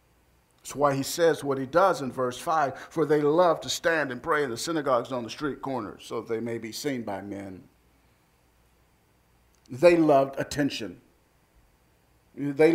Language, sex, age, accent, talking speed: English, male, 50-69, American, 165 wpm